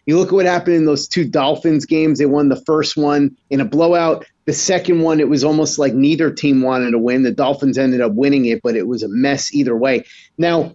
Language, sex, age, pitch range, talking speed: English, male, 30-49, 145-180 Hz, 245 wpm